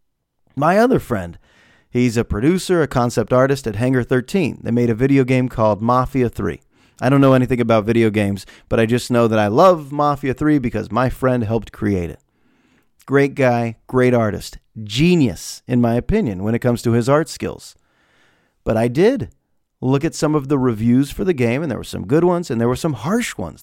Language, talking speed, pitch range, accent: English, 205 wpm, 110-145 Hz, American